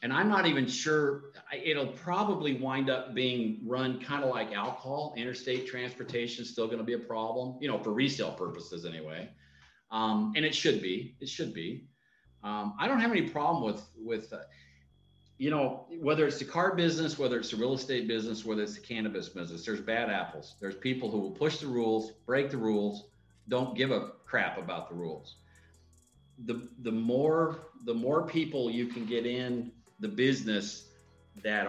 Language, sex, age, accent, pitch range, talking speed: English, male, 50-69, American, 110-145 Hz, 185 wpm